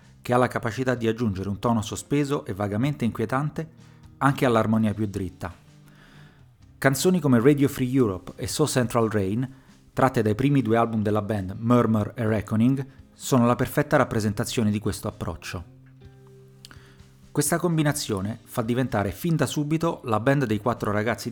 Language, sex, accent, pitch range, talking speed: Italian, male, native, 105-130 Hz, 150 wpm